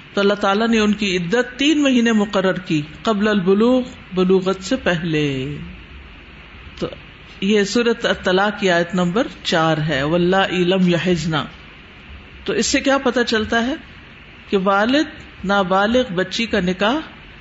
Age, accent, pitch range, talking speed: 50-69, Indian, 180-245 Hz, 140 wpm